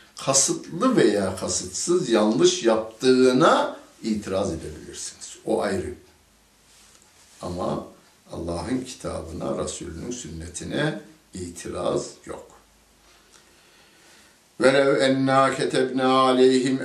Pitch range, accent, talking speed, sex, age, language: 90-130 Hz, native, 70 wpm, male, 60-79, Turkish